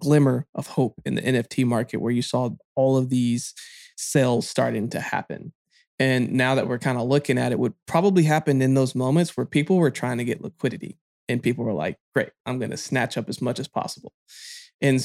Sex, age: male, 20-39